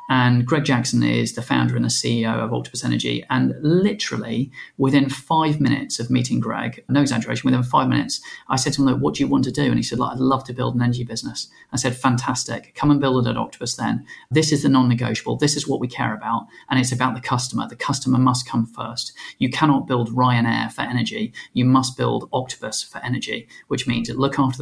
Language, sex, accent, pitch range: English, male, British, 120-145 Hz